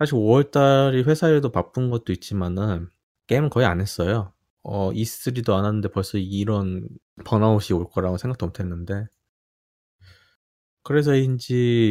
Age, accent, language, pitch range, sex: 20-39, native, Korean, 95-125 Hz, male